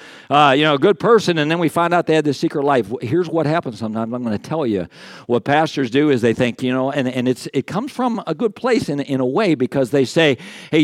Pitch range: 120-150 Hz